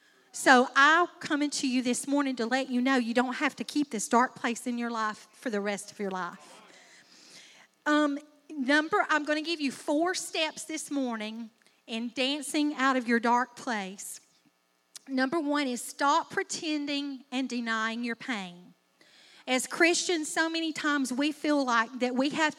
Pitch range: 245-300 Hz